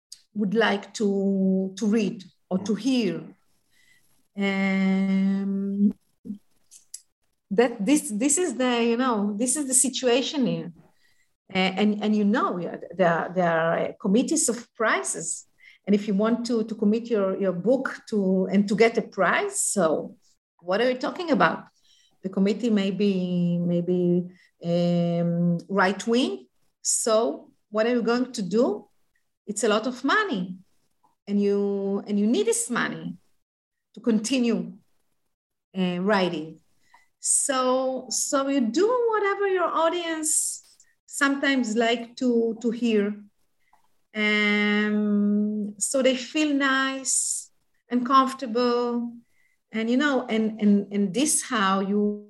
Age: 50-69